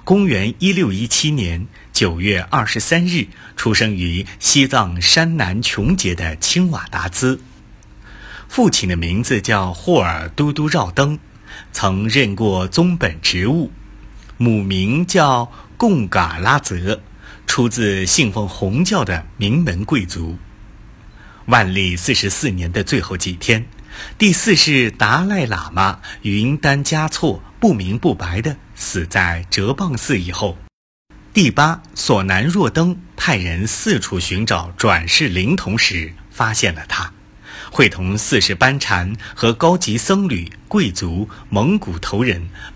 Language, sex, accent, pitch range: Chinese, male, native, 95-140 Hz